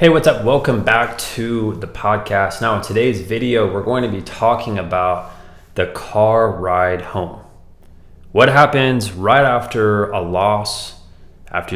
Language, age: English, 20-39